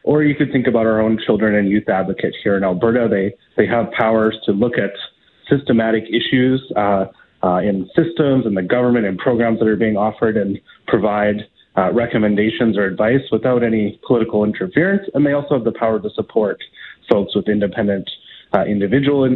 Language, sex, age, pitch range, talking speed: English, male, 30-49, 105-120 Hz, 185 wpm